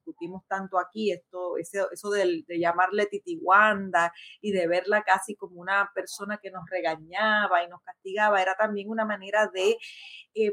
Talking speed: 165 wpm